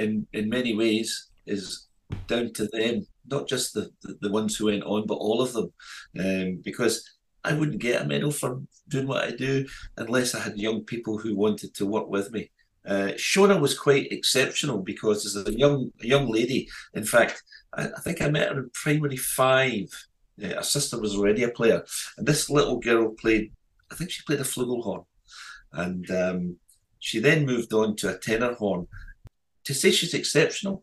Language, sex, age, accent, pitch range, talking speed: English, male, 40-59, British, 100-130 Hz, 185 wpm